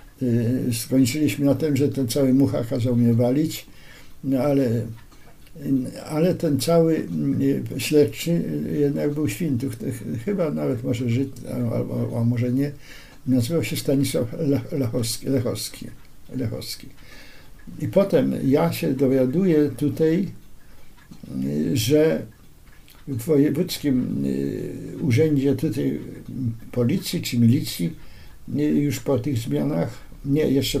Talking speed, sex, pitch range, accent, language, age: 100 wpm, male, 125-150 Hz, native, Polish, 60-79